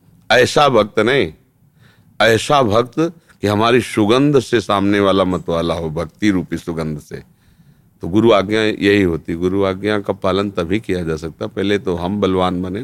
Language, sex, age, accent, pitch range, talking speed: Hindi, male, 40-59, native, 90-115 Hz, 170 wpm